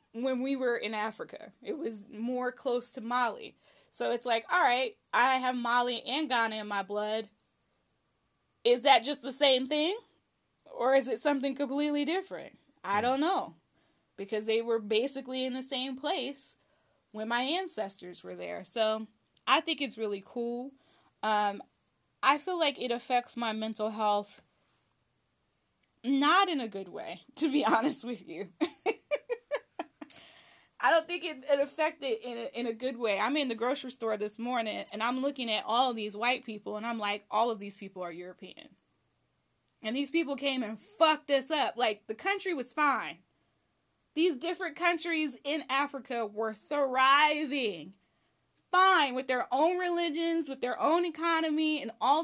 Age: 10-29